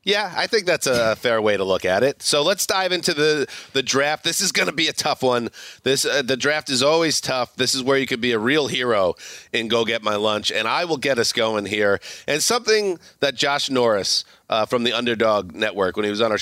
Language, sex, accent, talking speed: English, male, American, 250 wpm